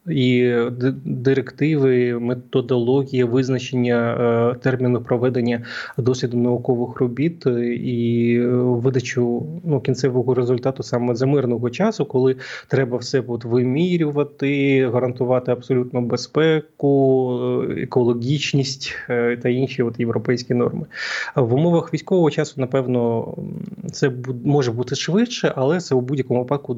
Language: Ukrainian